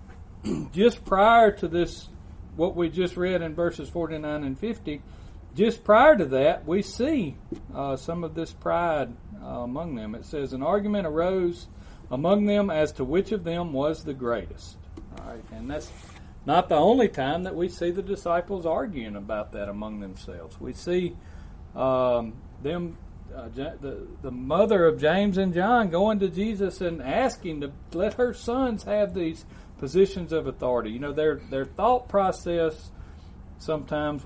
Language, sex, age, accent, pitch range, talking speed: English, male, 40-59, American, 110-180 Hz, 165 wpm